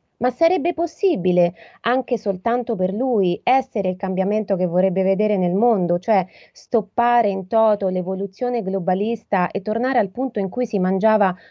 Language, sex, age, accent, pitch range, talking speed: Italian, female, 30-49, native, 180-240 Hz, 150 wpm